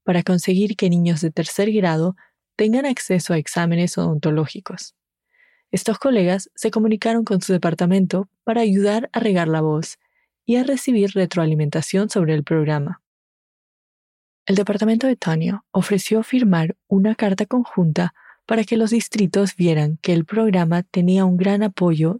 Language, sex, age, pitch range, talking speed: English, female, 20-39, 170-220 Hz, 145 wpm